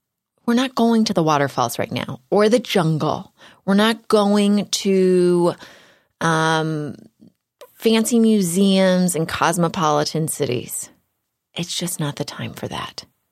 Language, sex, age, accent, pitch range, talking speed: English, female, 30-49, American, 145-185 Hz, 125 wpm